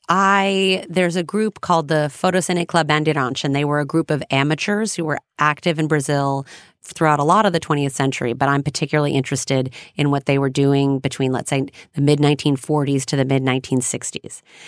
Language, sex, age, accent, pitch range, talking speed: English, female, 30-49, American, 140-170 Hz, 185 wpm